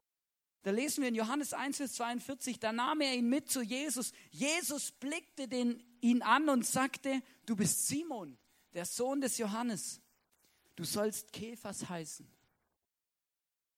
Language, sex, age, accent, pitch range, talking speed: German, male, 40-59, German, 215-275 Hz, 140 wpm